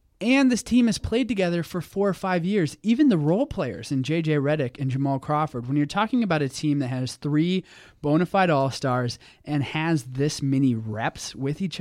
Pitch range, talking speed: 130-155 Hz, 205 wpm